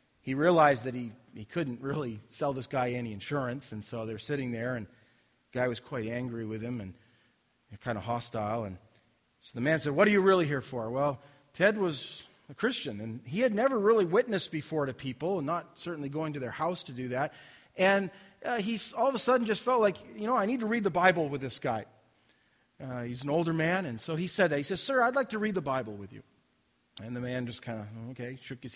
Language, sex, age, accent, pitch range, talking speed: English, male, 40-59, American, 125-175 Hz, 240 wpm